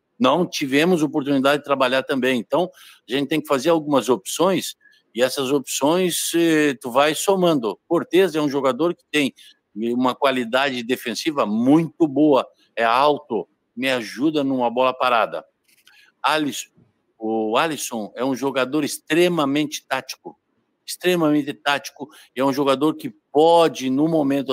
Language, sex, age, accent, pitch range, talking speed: Portuguese, male, 60-79, Brazilian, 135-175 Hz, 130 wpm